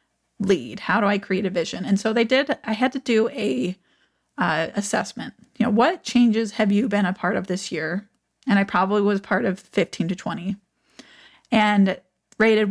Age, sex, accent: 30-49, female, American